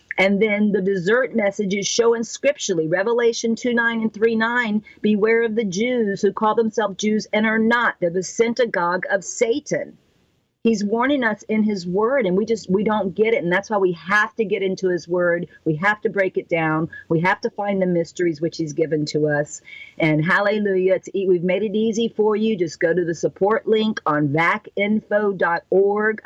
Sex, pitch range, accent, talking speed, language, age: female, 160-205 Hz, American, 200 wpm, English, 50-69